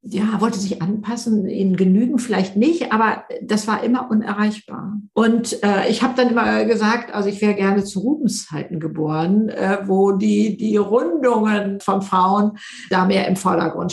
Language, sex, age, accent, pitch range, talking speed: German, female, 50-69, German, 185-230 Hz, 165 wpm